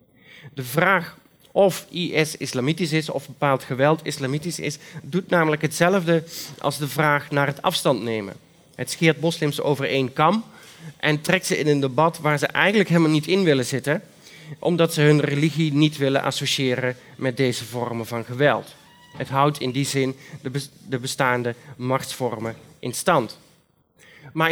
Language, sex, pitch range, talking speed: Dutch, male, 135-170 Hz, 155 wpm